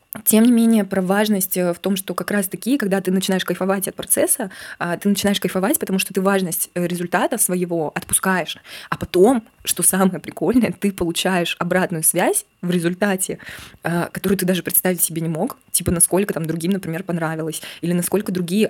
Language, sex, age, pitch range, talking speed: Russian, female, 20-39, 175-200 Hz, 170 wpm